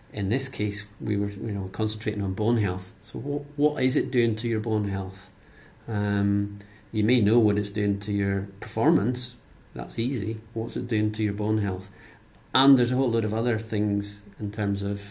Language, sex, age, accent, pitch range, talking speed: English, male, 40-59, British, 105-120 Hz, 220 wpm